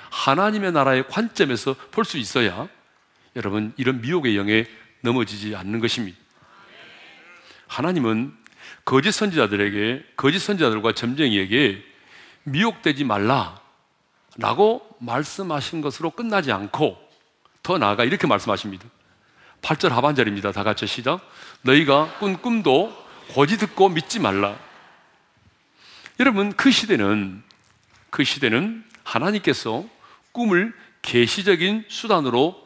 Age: 40-59